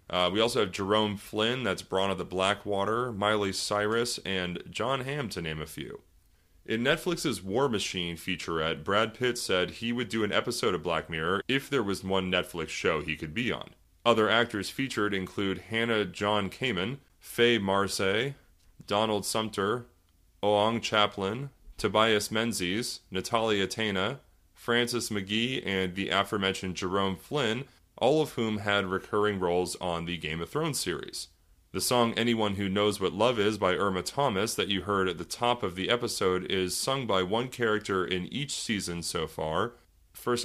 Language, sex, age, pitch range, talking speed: English, male, 30-49, 90-115 Hz, 170 wpm